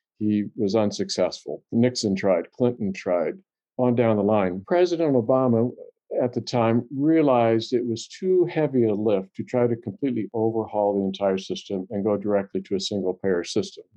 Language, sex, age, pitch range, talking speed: English, male, 50-69, 100-125 Hz, 165 wpm